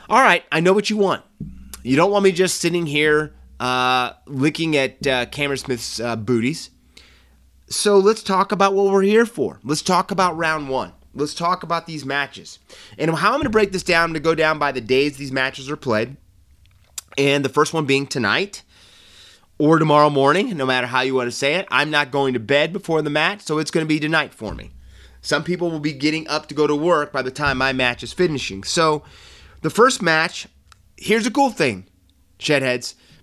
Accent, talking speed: American, 215 wpm